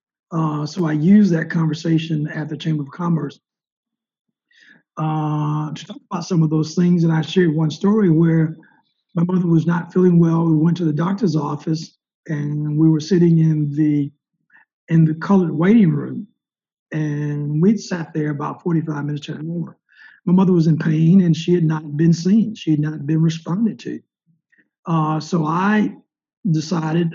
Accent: American